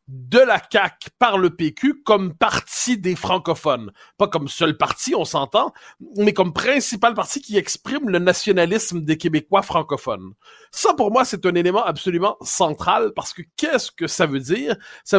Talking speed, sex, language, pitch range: 170 wpm, male, French, 160-230 Hz